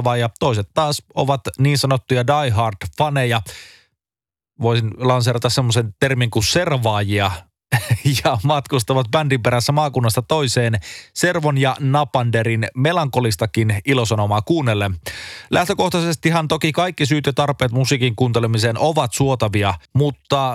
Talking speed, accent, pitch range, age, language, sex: 105 wpm, native, 115-145 Hz, 30-49, Finnish, male